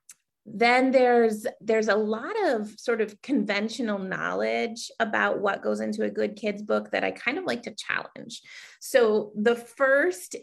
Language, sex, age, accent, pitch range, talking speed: English, female, 30-49, American, 175-235 Hz, 160 wpm